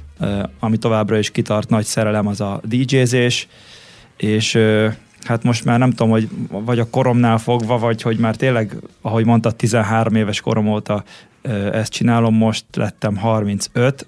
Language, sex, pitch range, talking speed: Hungarian, male, 110-120 Hz, 160 wpm